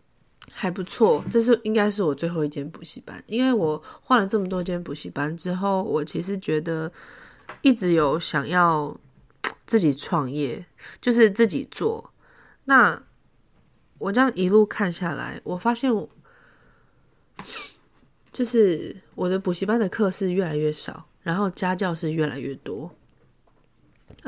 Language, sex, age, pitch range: Chinese, female, 20-39, 170-230 Hz